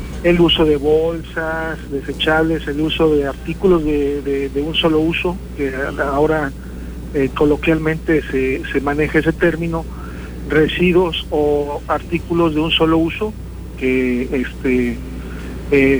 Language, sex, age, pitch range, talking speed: Spanish, male, 50-69, 130-160 Hz, 130 wpm